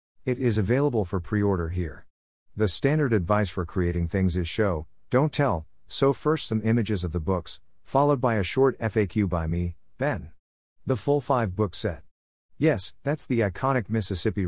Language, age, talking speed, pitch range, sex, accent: English, 50-69, 170 wpm, 90-125 Hz, male, American